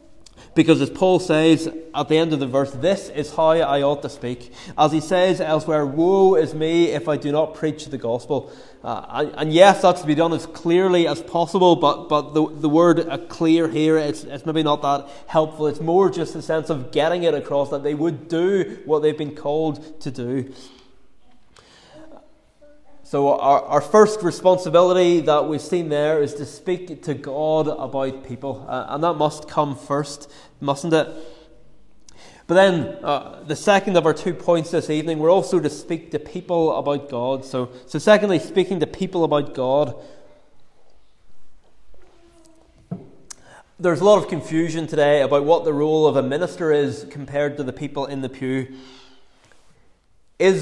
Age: 20-39